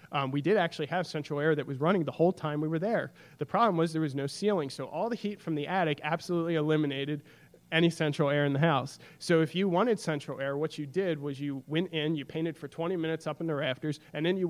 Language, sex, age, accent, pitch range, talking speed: English, male, 30-49, American, 140-170 Hz, 260 wpm